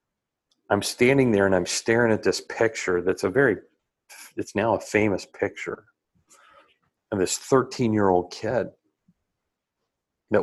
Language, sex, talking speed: English, male, 140 wpm